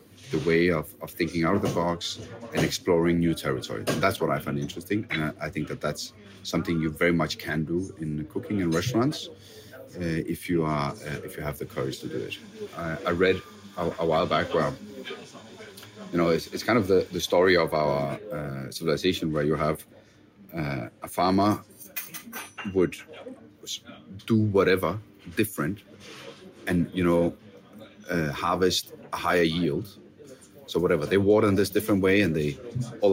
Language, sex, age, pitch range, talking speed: English, male, 30-49, 80-100 Hz, 180 wpm